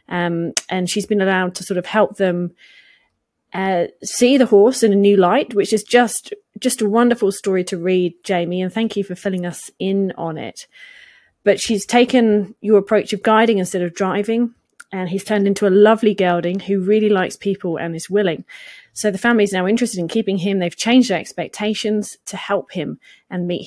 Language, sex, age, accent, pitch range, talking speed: English, female, 30-49, British, 185-235 Hz, 200 wpm